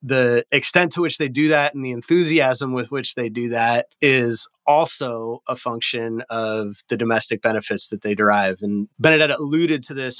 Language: English